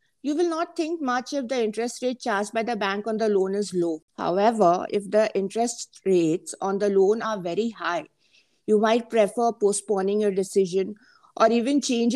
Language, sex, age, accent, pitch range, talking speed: English, female, 50-69, Indian, 195-240 Hz, 190 wpm